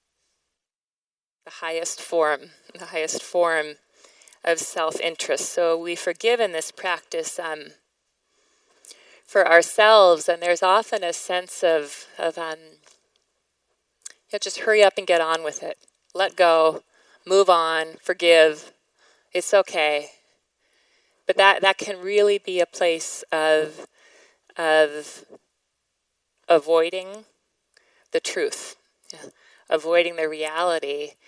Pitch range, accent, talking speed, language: 160-200 Hz, American, 115 wpm, English